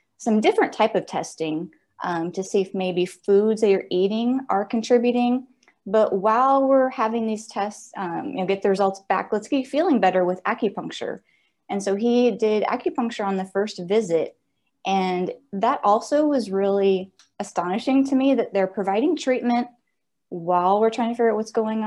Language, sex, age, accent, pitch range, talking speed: English, female, 20-39, American, 190-245 Hz, 175 wpm